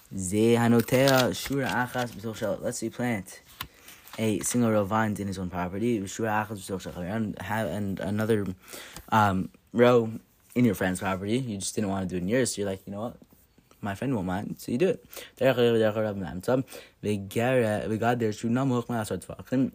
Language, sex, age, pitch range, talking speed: English, male, 20-39, 100-115 Hz, 140 wpm